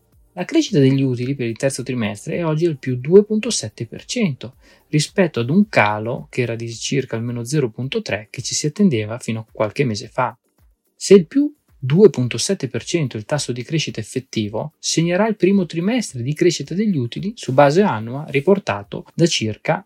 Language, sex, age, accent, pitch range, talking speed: Italian, male, 20-39, native, 120-180 Hz, 170 wpm